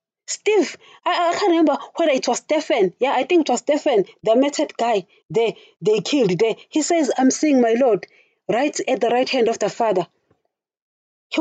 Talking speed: 195 wpm